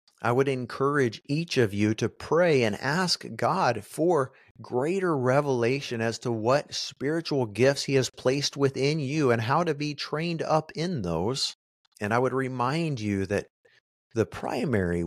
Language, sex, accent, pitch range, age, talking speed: English, male, American, 105-140 Hz, 50-69, 160 wpm